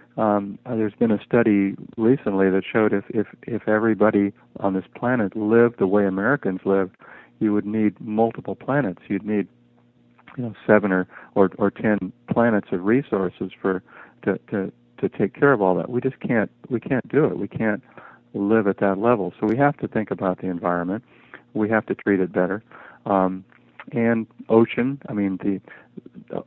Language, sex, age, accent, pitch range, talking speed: English, male, 50-69, American, 95-110 Hz, 190 wpm